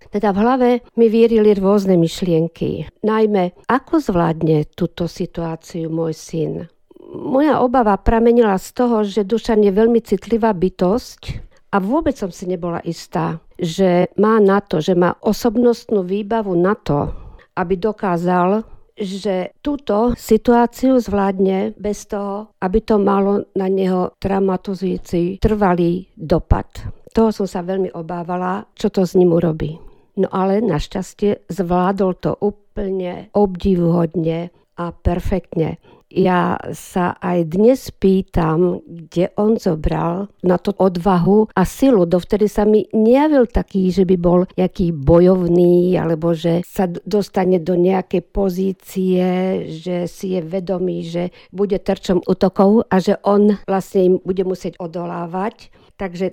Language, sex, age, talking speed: Slovak, female, 50-69, 130 wpm